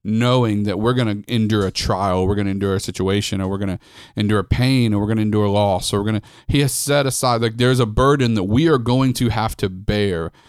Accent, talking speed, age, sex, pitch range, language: American, 270 wpm, 30-49, male, 100-120 Hz, English